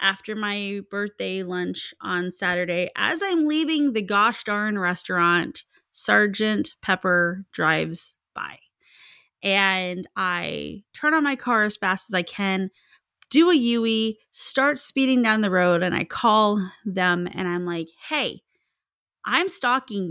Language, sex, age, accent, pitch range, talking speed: English, female, 30-49, American, 185-245 Hz, 135 wpm